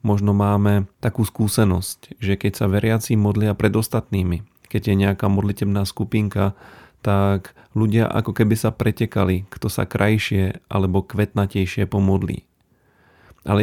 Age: 40-59